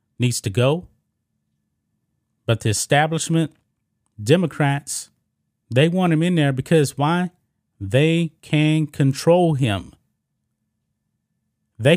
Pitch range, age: 115-150 Hz, 30-49